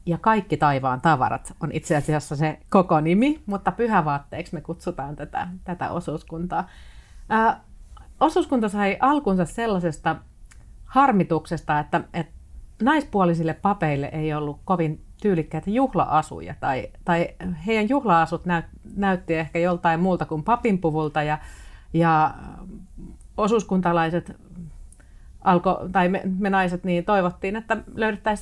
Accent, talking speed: native, 120 wpm